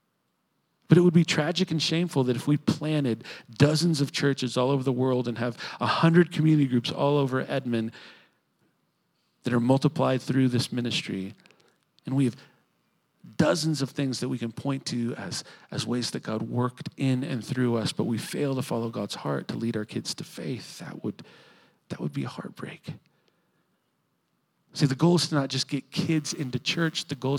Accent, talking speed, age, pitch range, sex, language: American, 190 wpm, 40-59, 125-165 Hz, male, English